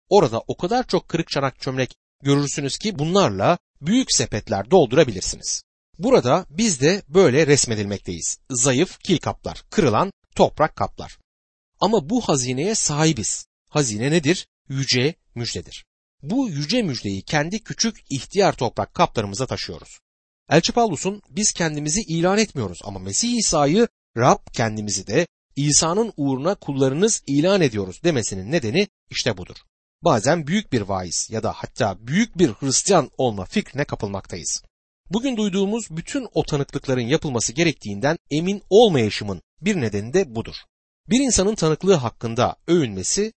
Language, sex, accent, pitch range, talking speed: Turkish, male, native, 115-190 Hz, 130 wpm